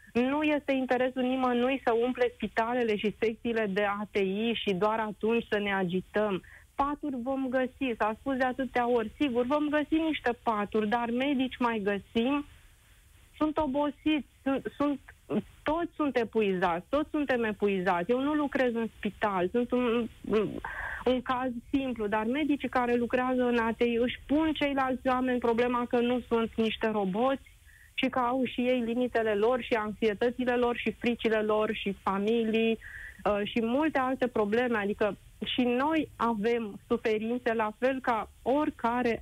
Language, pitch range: Romanian, 220-260 Hz